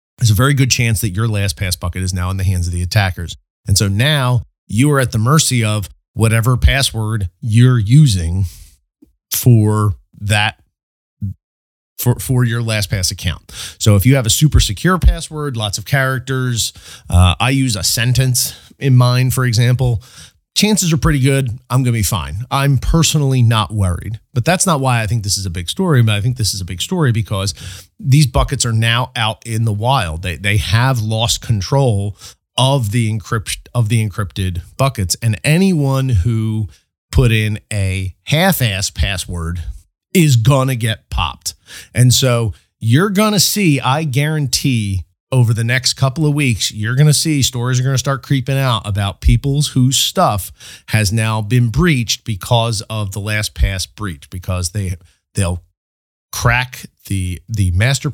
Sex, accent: male, American